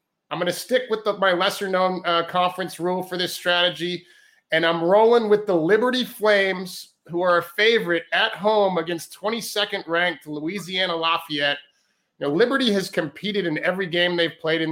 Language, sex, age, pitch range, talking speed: English, male, 30-49, 165-195 Hz, 180 wpm